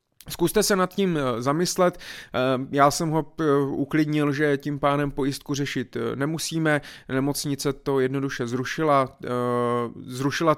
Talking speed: 115 wpm